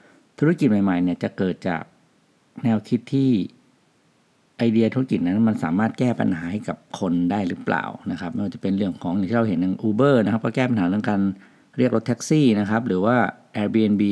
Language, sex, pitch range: English, male, 95-130 Hz